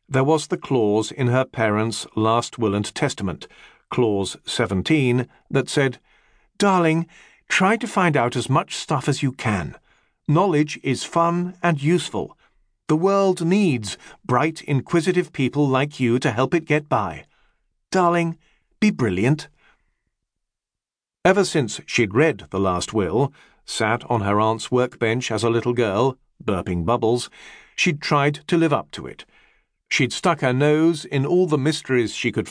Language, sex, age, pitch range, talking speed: English, male, 50-69, 115-160 Hz, 150 wpm